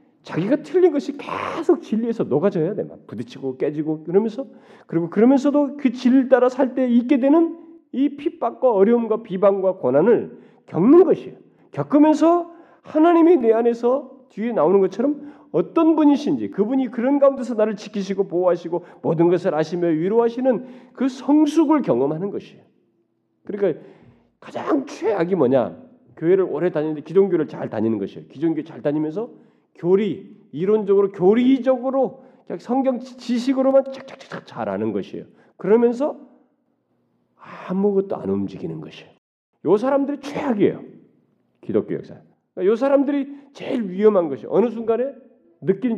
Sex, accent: male, native